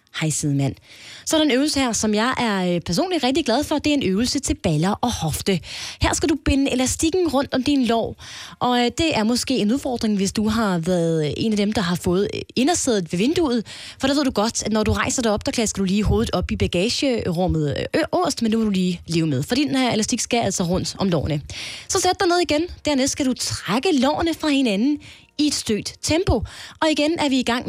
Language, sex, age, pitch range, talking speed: Danish, female, 20-39, 195-275 Hz, 235 wpm